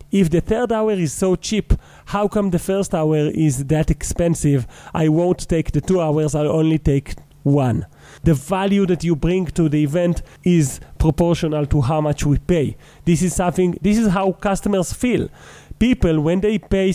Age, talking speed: 30-49, 185 wpm